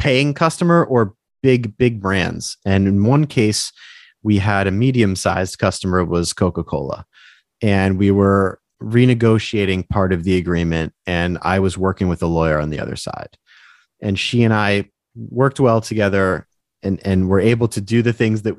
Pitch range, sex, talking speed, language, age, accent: 95-120 Hz, male, 175 wpm, English, 30-49, American